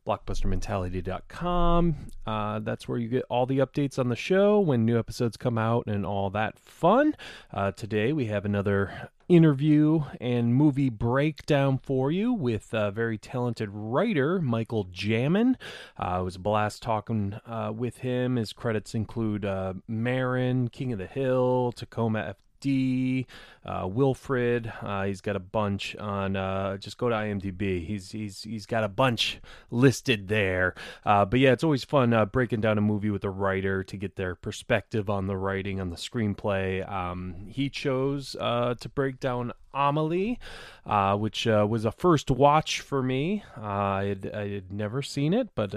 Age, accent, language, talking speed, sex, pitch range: 30-49, American, English, 170 wpm, male, 100-135 Hz